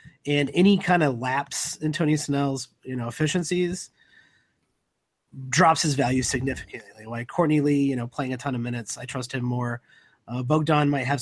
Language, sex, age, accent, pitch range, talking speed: English, male, 30-49, American, 130-165 Hz, 175 wpm